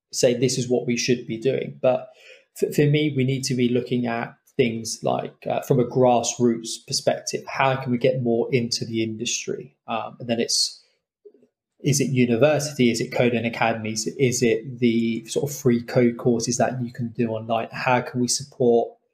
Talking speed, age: 200 wpm, 20-39